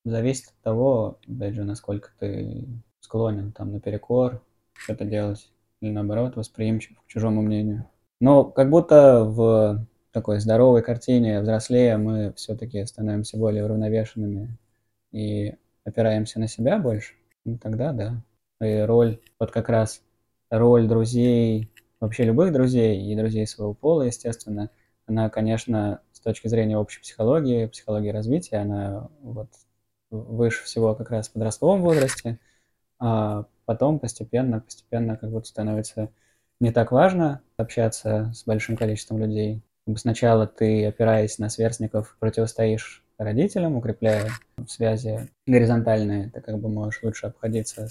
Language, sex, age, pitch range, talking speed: Russian, male, 20-39, 110-115 Hz, 125 wpm